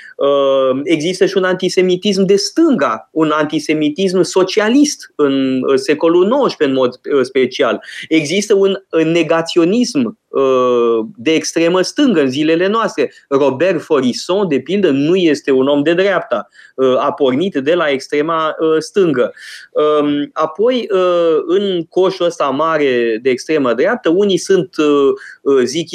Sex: male